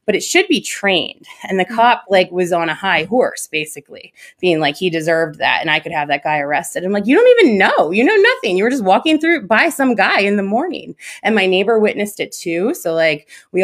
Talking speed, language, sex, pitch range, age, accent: 245 wpm, English, female, 165-220 Hz, 20-39, American